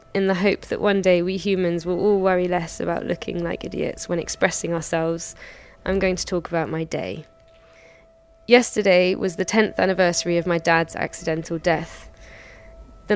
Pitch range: 170-200 Hz